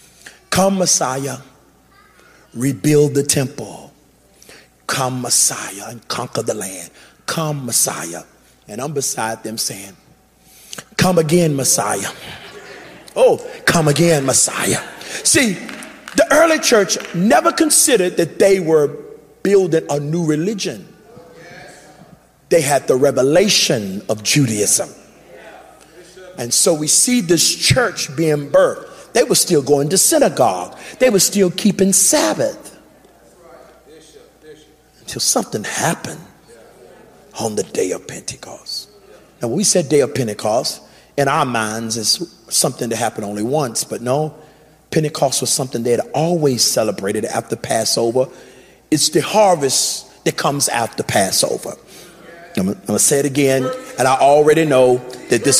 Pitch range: 135-185 Hz